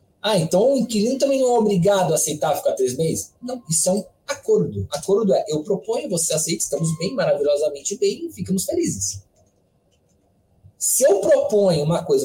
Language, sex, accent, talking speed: Portuguese, male, Brazilian, 170 wpm